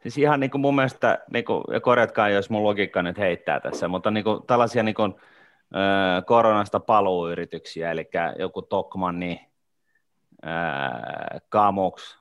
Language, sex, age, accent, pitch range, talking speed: Finnish, male, 30-49, native, 90-105 Hz, 120 wpm